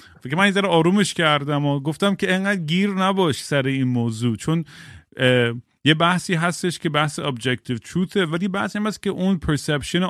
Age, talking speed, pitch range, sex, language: 30-49, 180 wpm, 135-175 Hz, male, Persian